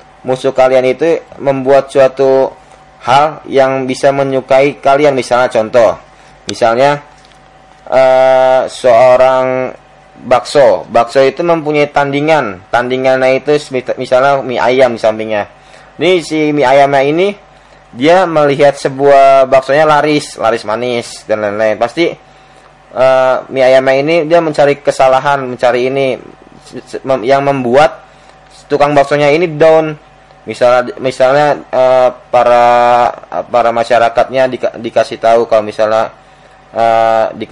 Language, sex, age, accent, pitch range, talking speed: Indonesian, male, 20-39, native, 125-150 Hz, 110 wpm